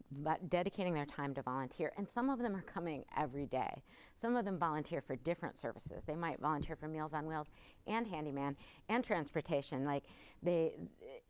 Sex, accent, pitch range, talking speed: female, American, 150-205 Hz, 180 wpm